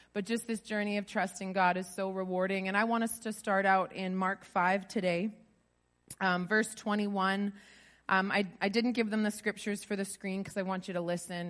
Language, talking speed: English, 215 wpm